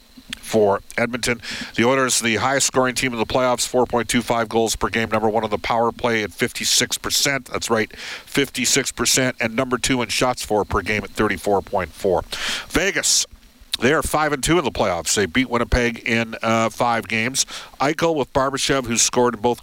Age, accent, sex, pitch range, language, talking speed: 50-69, American, male, 105-125 Hz, English, 175 wpm